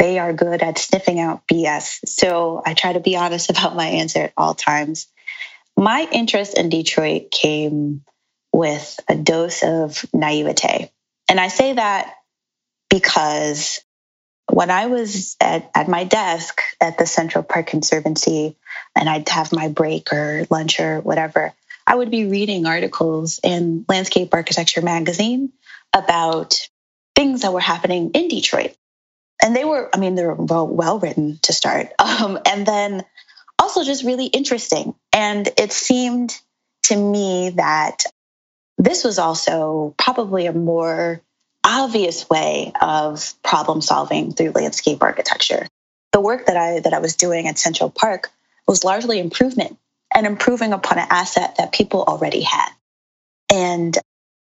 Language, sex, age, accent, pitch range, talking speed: English, female, 20-39, American, 160-210 Hz, 145 wpm